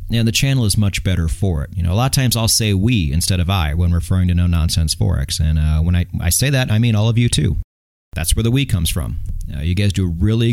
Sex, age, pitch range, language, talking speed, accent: male, 30-49, 85-115 Hz, English, 290 wpm, American